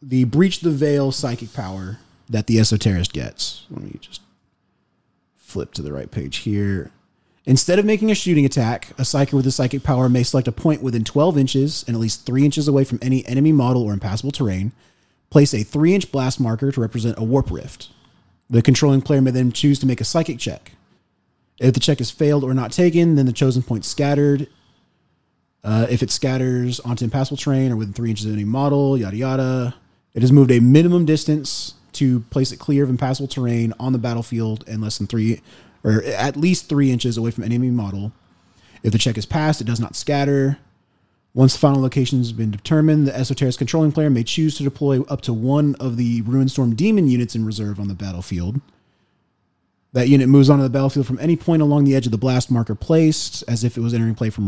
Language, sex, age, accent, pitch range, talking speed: English, male, 30-49, American, 115-140 Hz, 210 wpm